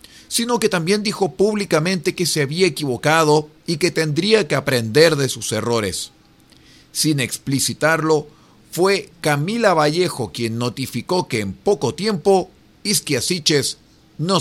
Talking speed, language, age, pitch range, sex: 125 wpm, Spanish, 40-59, 120-170 Hz, male